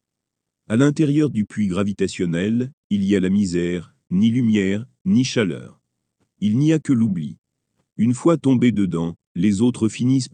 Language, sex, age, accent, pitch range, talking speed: French, male, 50-69, French, 100-125 Hz, 150 wpm